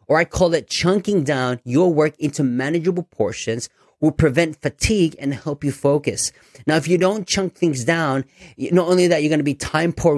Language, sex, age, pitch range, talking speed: English, male, 30-49, 130-170 Hz, 200 wpm